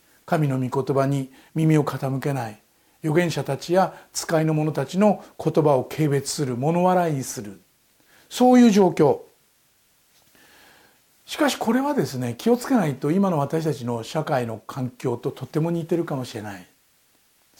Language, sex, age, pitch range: Japanese, male, 60-79, 135-185 Hz